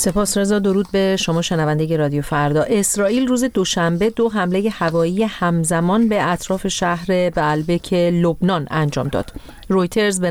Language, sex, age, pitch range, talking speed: Persian, female, 40-59, 155-195 Hz, 140 wpm